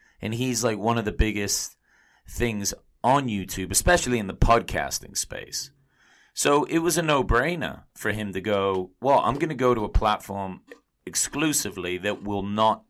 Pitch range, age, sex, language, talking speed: 85-115 Hz, 30-49, male, English, 170 wpm